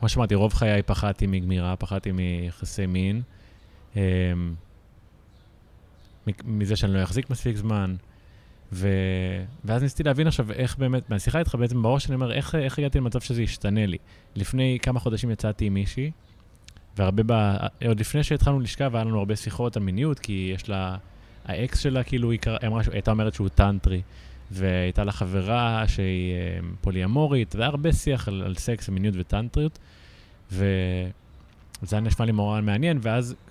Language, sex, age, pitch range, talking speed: Hebrew, male, 20-39, 95-120 Hz, 150 wpm